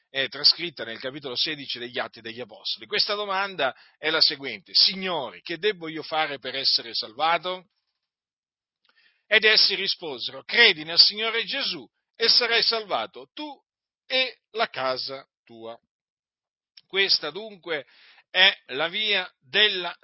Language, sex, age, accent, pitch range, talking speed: Italian, male, 50-69, native, 140-220 Hz, 130 wpm